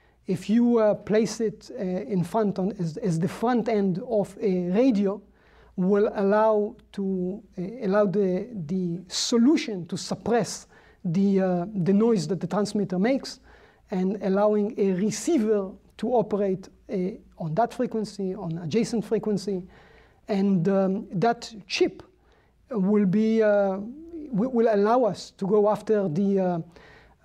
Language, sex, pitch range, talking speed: English, male, 185-220 Hz, 140 wpm